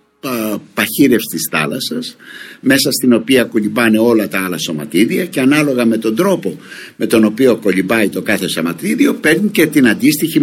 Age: 60-79